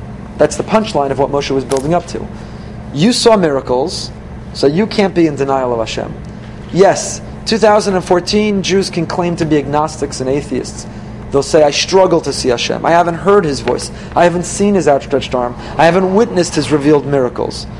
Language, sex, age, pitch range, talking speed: English, male, 30-49, 130-175 Hz, 185 wpm